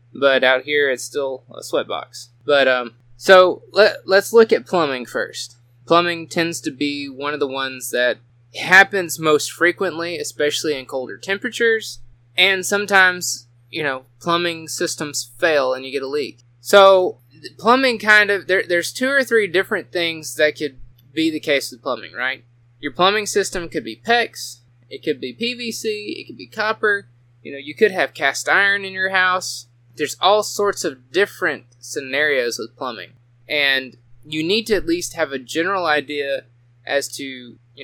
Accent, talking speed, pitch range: American, 165 wpm, 125-175 Hz